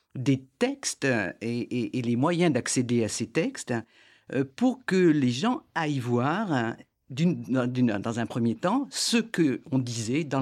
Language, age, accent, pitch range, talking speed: French, 50-69, French, 120-160 Hz, 155 wpm